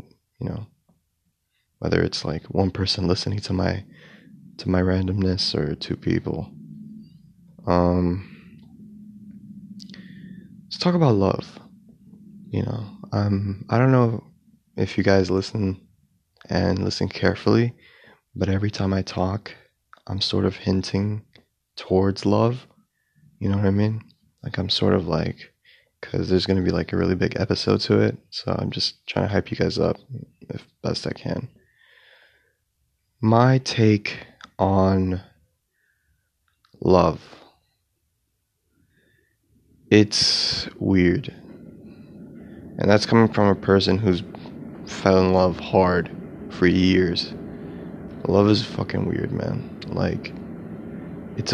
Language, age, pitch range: English, 20-39, 95-130 Hz